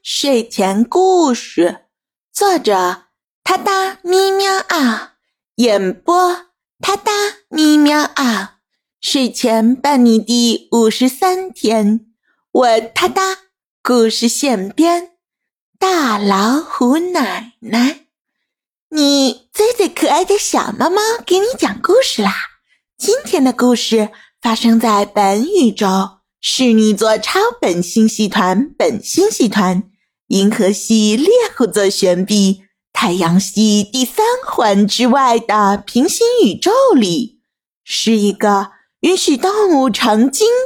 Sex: female